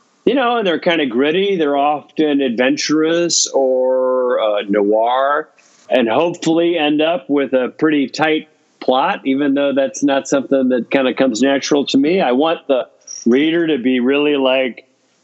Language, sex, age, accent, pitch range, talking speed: English, male, 50-69, American, 120-150 Hz, 165 wpm